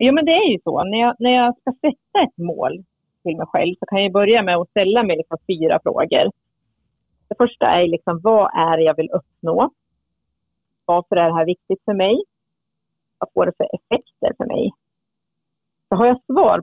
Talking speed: 200 wpm